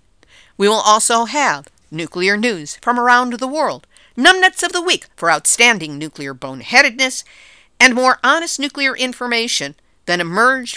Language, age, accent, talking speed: English, 50-69, American, 140 wpm